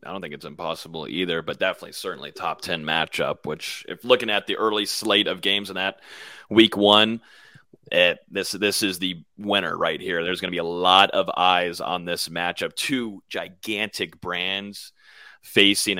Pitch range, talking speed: 90-115 Hz, 180 wpm